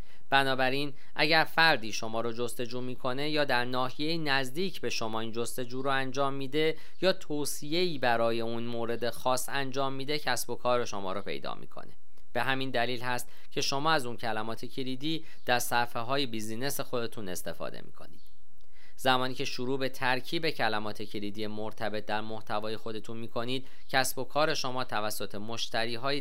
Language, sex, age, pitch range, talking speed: Persian, male, 40-59, 115-140 Hz, 155 wpm